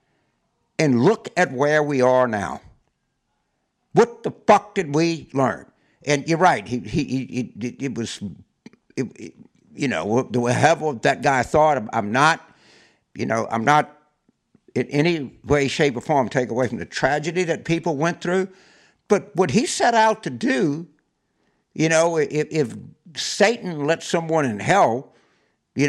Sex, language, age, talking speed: male, English, 60-79, 160 wpm